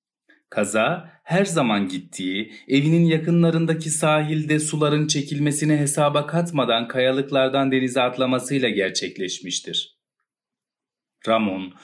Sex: male